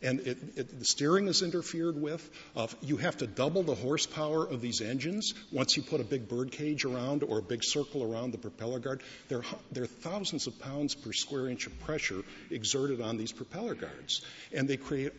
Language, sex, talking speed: English, male, 200 wpm